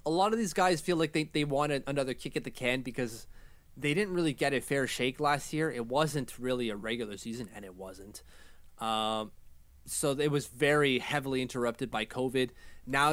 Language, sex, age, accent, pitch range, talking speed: English, male, 20-39, American, 110-140 Hz, 200 wpm